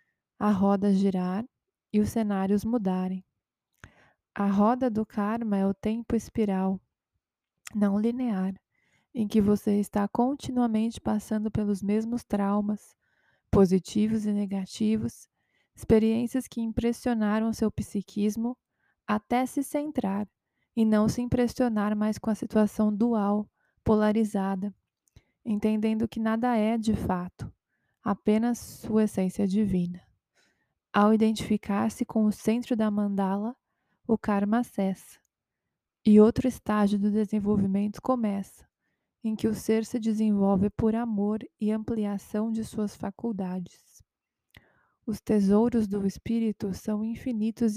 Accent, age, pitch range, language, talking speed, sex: Brazilian, 20-39, 205-225 Hz, Portuguese, 115 wpm, female